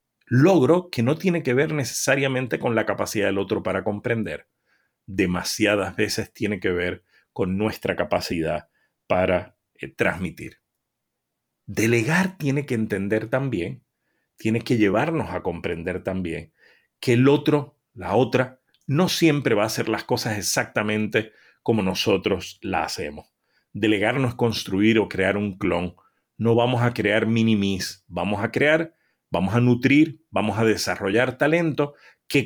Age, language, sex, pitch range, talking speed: 40-59, English, male, 105-140 Hz, 140 wpm